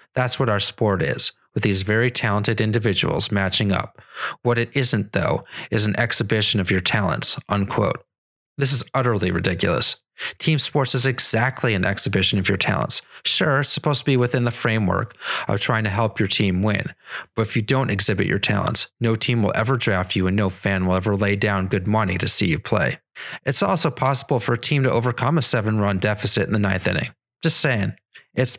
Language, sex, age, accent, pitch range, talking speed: English, male, 30-49, American, 105-125 Hz, 200 wpm